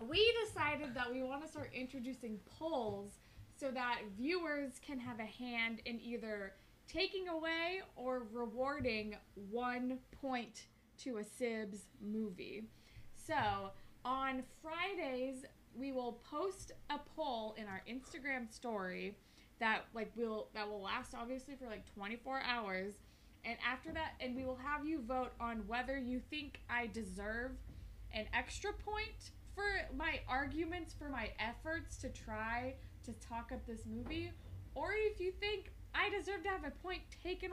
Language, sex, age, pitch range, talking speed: English, female, 20-39, 230-320 Hz, 150 wpm